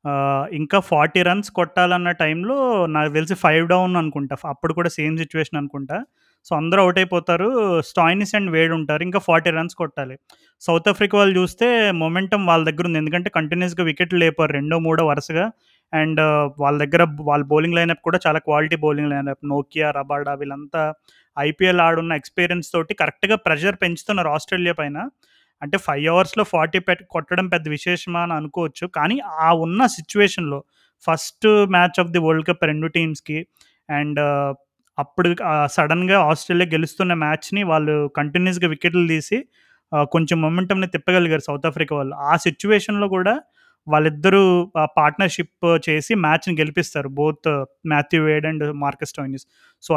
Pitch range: 150-180 Hz